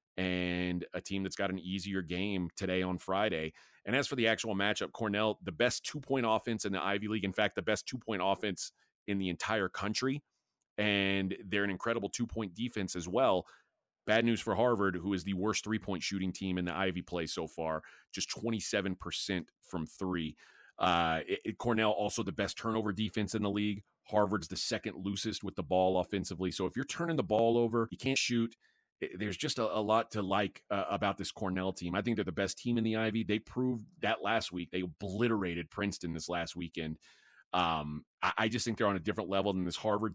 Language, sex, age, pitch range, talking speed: English, male, 30-49, 95-110 Hz, 205 wpm